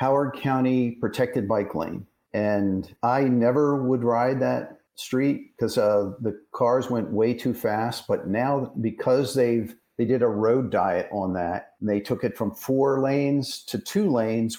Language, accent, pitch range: English, American, 105-125 Hz